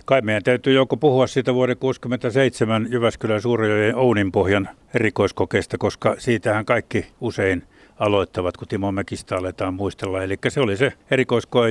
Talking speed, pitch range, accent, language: 140 wpm, 105-125 Hz, native, Finnish